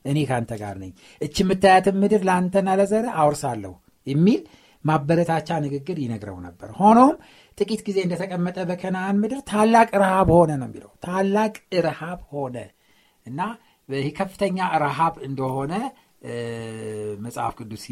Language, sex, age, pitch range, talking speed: Amharic, male, 60-79, 120-190 Hz, 110 wpm